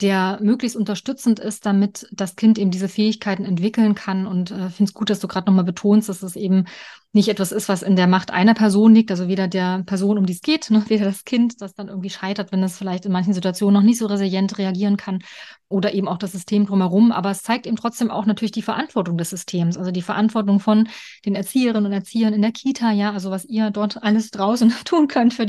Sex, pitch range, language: female, 190-220 Hz, German